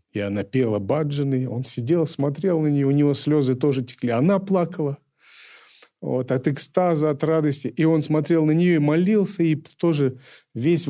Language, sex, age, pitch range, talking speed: Russian, male, 40-59, 110-150 Hz, 170 wpm